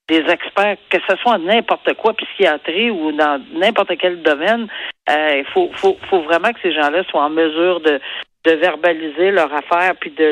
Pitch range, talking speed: 170-245 Hz, 190 wpm